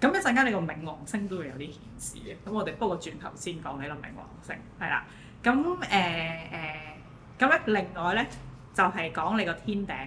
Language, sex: Chinese, female